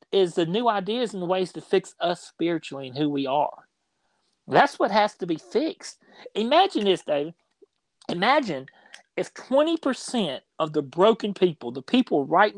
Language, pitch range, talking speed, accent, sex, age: English, 155-205 Hz, 160 wpm, American, male, 40-59